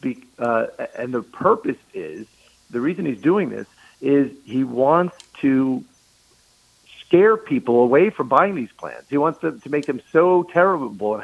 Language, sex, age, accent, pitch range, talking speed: English, male, 50-69, American, 120-160 Hz, 160 wpm